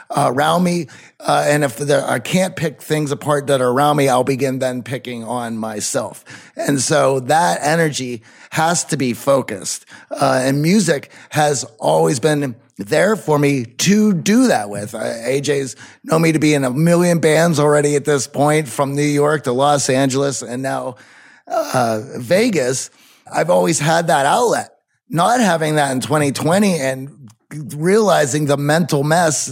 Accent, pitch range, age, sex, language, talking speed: American, 130-155 Hz, 30-49, male, English, 165 wpm